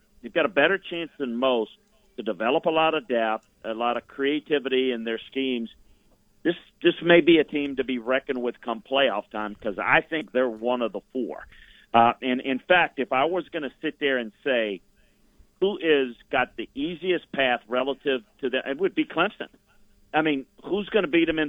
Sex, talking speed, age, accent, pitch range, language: male, 210 wpm, 50-69, American, 125-160 Hz, English